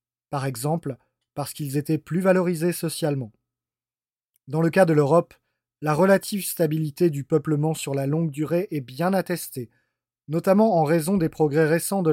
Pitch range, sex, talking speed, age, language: 140-175 Hz, male, 160 wpm, 30-49, French